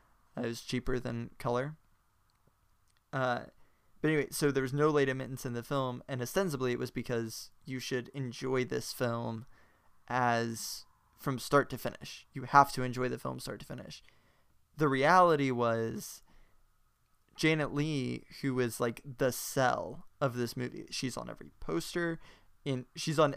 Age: 20-39